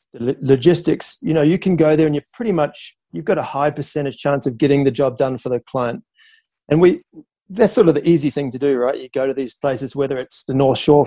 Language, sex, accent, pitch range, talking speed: English, male, Australian, 130-170 Hz, 250 wpm